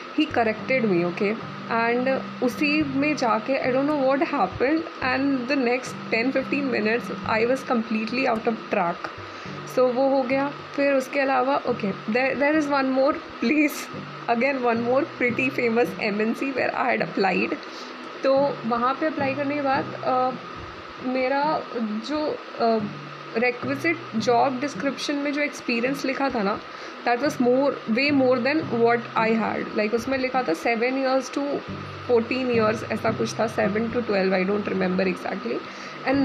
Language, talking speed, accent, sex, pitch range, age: Hindi, 160 wpm, native, female, 225-275 Hz, 20-39